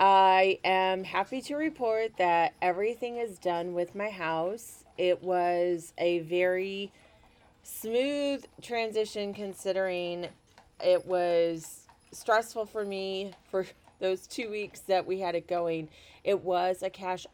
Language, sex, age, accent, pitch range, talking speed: English, female, 30-49, American, 160-195 Hz, 130 wpm